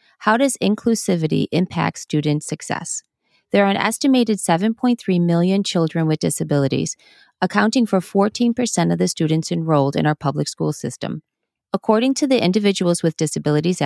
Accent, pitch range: American, 160-215 Hz